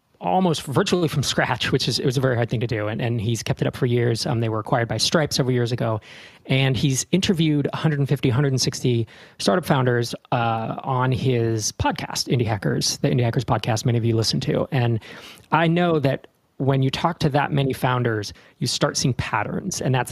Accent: American